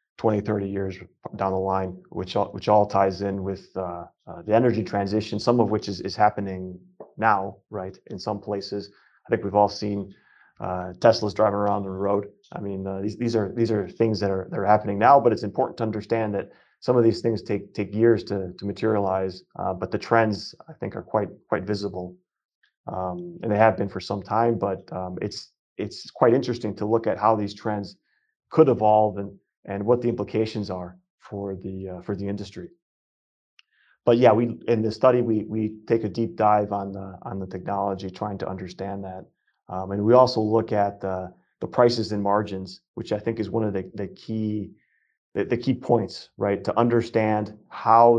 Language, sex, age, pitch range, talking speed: English, male, 30-49, 95-110 Hz, 205 wpm